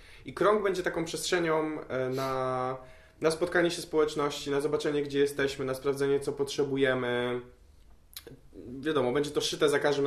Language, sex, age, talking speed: Polish, male, 20-39, 145 wpm